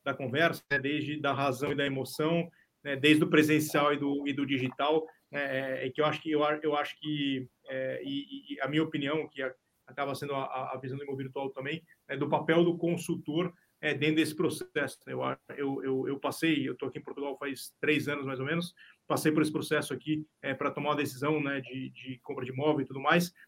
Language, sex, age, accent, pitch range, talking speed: Portuguese, male, 20-39, Brazilian, 145-185 Hz, 225 wpm